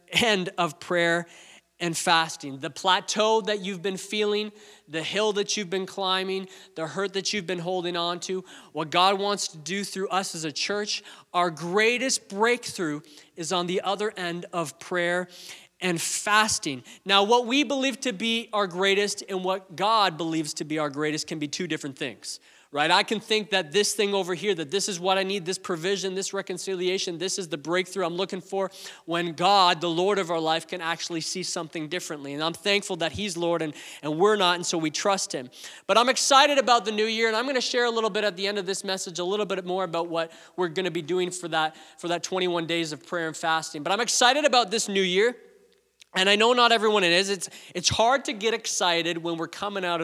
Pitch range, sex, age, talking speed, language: 170-205 Hz, male, 20-39, 225 wpm, English